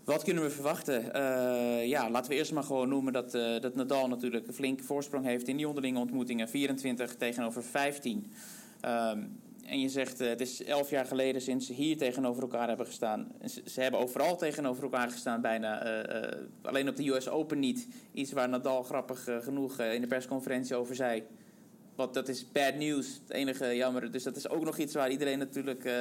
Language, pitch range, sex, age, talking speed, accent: Dutch, 125-150 Hz, male, 20-39, 210 wpm, Dutch